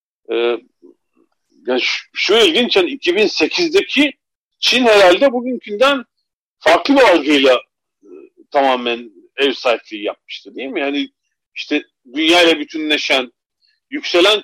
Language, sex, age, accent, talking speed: Turkish, male, 40-59, native, 110 wpm